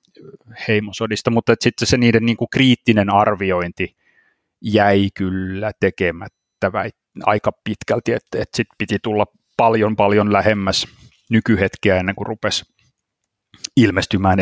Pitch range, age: 100-115 Hz, 30-49